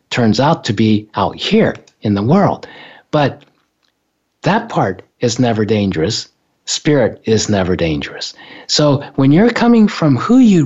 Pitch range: 130-170 Hz